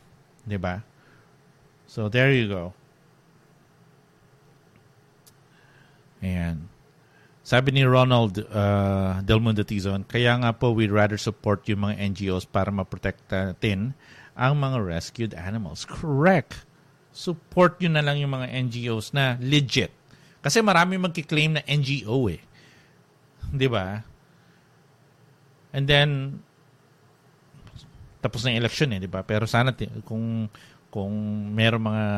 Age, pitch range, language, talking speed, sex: 50-69, 110-145 Hz, English, 110 wpm, male